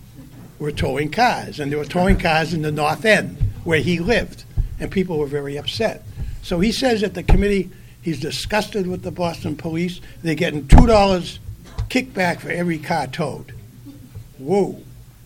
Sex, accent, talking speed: male, American, 165 wpm